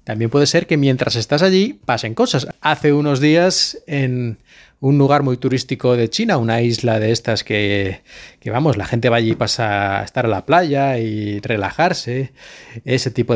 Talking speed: 185 wpm